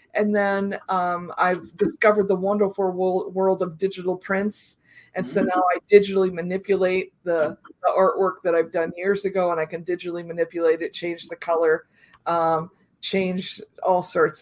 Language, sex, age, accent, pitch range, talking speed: English, female, 50-69, American, 170-205 Hz, 160 wpm